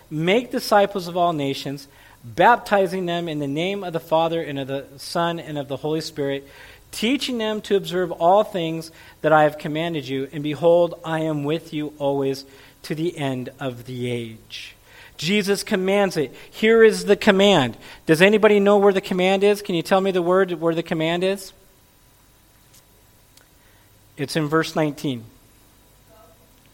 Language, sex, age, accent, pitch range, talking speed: English, male, 40-59, American, 135-200 Hz, 165 wpm